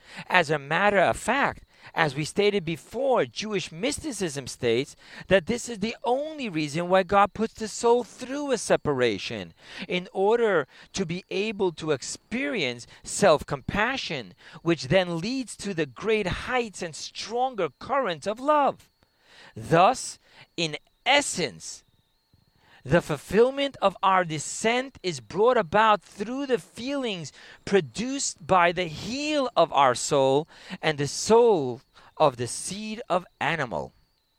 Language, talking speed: English, 130 wpm